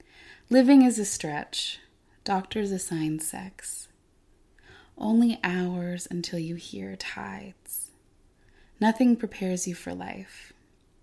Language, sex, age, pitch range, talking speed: English, female, 20-39, 150-200 Hz, 100 wpm